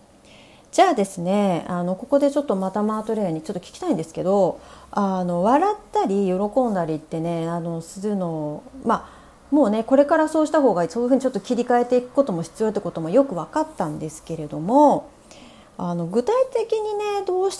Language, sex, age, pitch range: Japanese, female, 40-59, 180-290 Hz